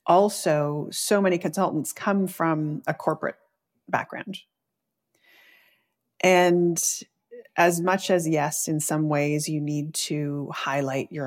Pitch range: 150-180 Hz